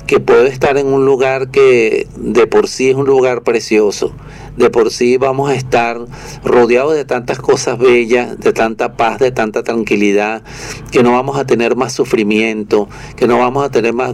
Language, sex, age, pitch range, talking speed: Spanish, male, 50-69, 115-160 Hz, 185 wpm